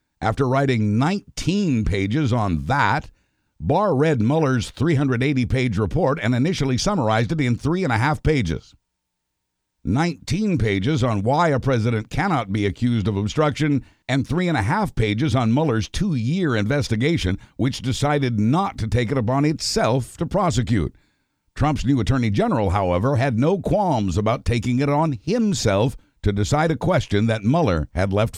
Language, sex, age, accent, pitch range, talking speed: English, male, 60-79, American, 110-145 Hz, 155 wpm